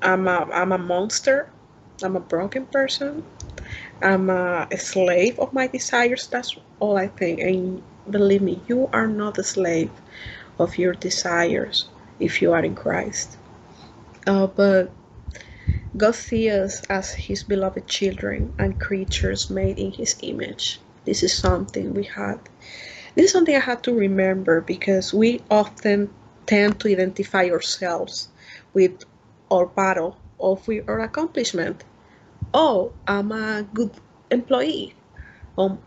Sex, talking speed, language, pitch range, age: female, 135 wpm, English, 180-215 Hz, 30-49